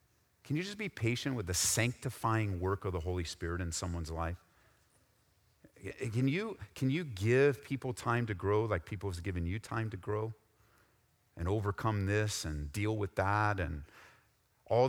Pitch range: 95-115 Hz